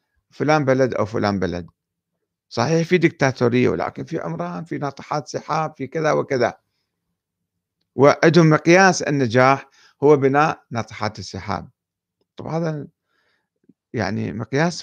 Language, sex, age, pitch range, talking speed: Arabic, male, 50-69, 115-150 Hz, 115 wpm